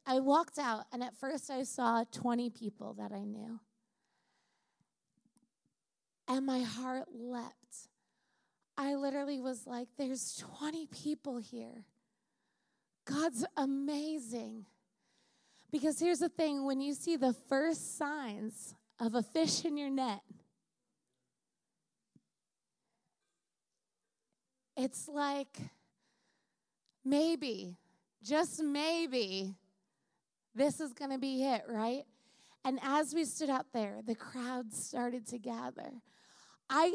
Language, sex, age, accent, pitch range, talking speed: English, female, 20-39, American, 240-330 Hz, 110 wpm